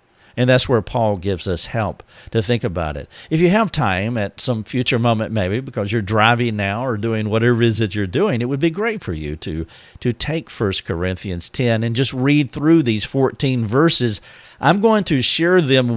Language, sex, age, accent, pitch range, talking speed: English, male, 50-69, American, 100-135 Hz, 210 wpm